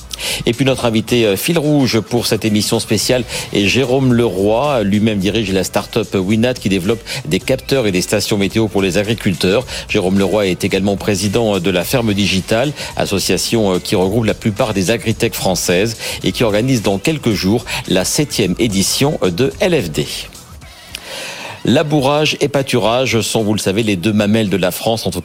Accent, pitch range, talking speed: French, 100-120 Hz, 170 wpm